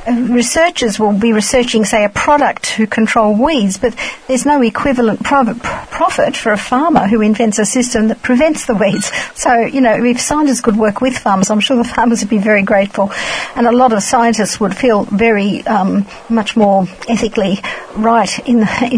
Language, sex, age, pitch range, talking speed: English, female, 60-79, 215-255 Hz, 185 wpm